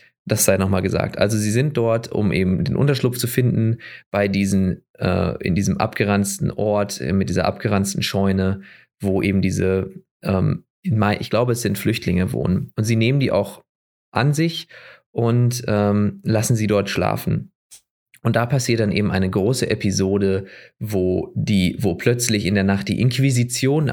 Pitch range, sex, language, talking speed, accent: 100-120 Hz, male, English, 170 wpm, German